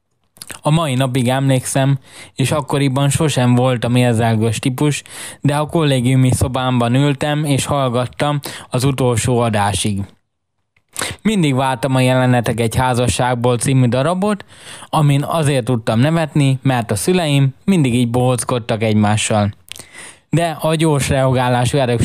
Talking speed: 120 wpm